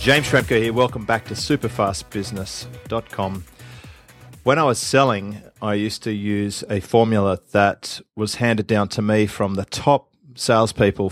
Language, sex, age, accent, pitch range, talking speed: English, male, 30-49, Australian, 100-115 Hz, 145 wpm